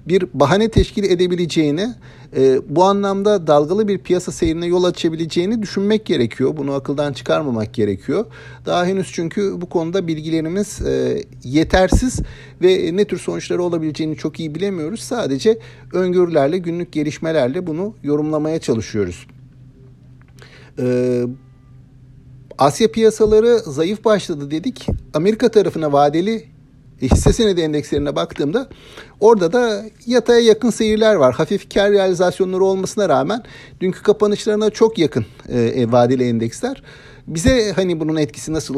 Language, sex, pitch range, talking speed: Turkish, male, 145-205 Hz, 115 wpm